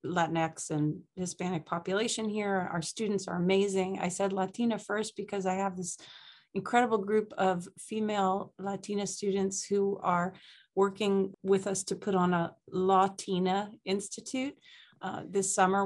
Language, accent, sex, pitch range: English, American, female, 185-210 Hz